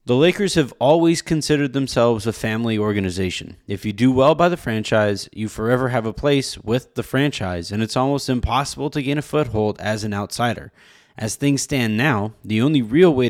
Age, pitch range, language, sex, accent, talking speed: 20-39, 110-135 Hz, English, male, American, 195 wpm